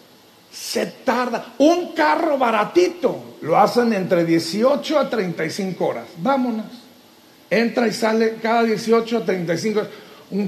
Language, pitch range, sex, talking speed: Spanish, 215-280 Hz, male, 125 wpm